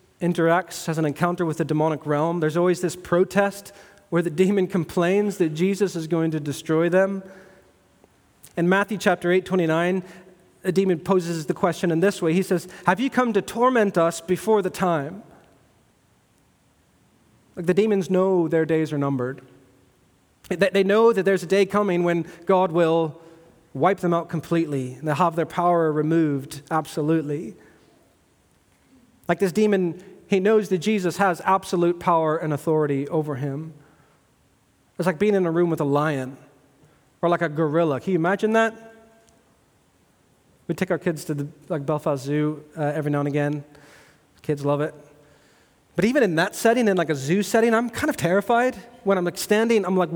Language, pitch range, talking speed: English, 155-190 Hz, 170 wpm